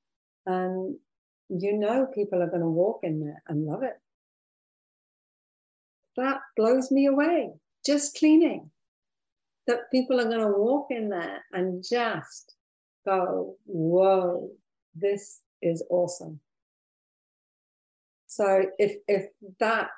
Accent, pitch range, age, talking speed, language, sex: British, 180-210 Hz, 50-69, 115 wpm, English, female